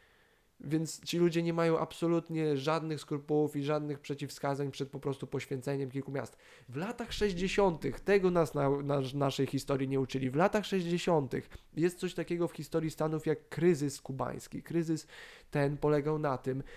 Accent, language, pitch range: native, Polish, 140-175 Hz